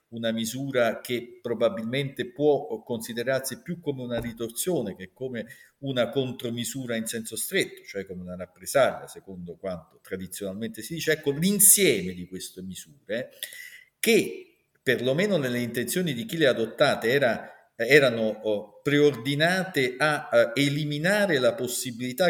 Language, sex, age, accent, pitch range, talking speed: Italian, male, 50-69, native, 120-195 Hz, 135 wpm